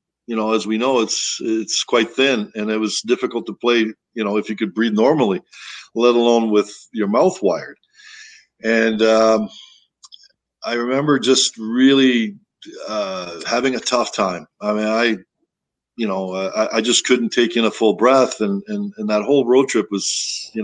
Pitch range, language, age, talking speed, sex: 110-125 Hz, English, 50-69, 185 wpm, male